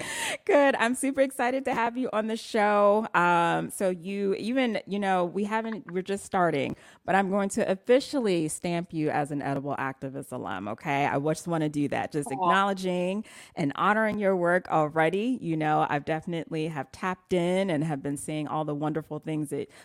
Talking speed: 190 wpm